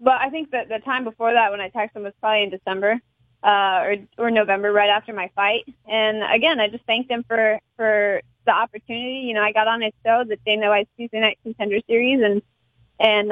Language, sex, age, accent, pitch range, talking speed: English, female, 20-39, American, 205-250 Hz, 230 wpm